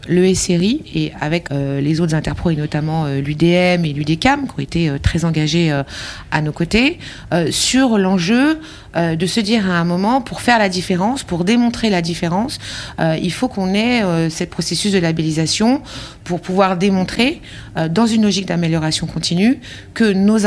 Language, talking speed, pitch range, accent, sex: French, 190 wpm, 170-235 Hz, French, female